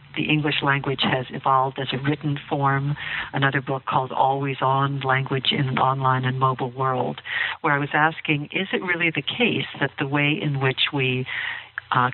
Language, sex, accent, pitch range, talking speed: English, female, American, 135-160 Hz, 185 wpm